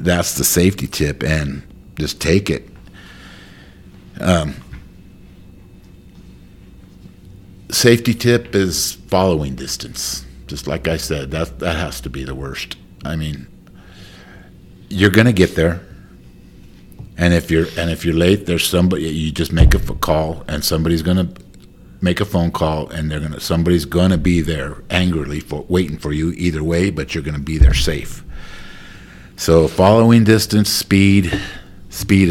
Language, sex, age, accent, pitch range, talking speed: English, male, 50-69, American, 75-95 Hz, 145 wpm